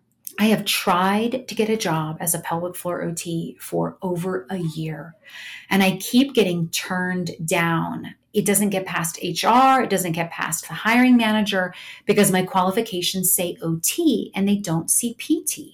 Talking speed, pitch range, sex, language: 170 wpm, 170-215 Hz, female, English